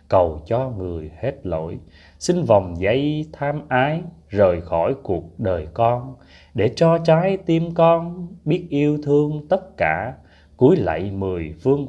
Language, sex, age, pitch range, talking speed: Vietnamese, male, 20-39, 90-145 Hz, 145 wpm